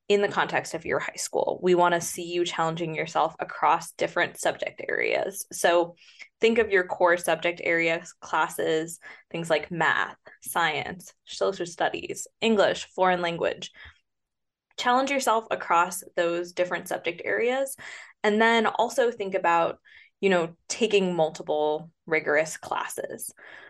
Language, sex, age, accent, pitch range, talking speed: English, female, 20-39, American, 175-250 Hz, 135 wpm